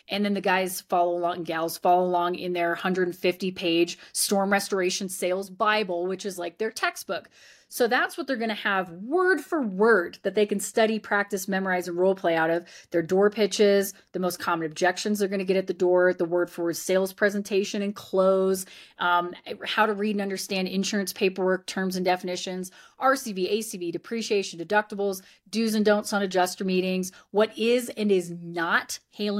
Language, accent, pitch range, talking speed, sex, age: English, American, 185-235 Hz, 190 wpm, female, 30-49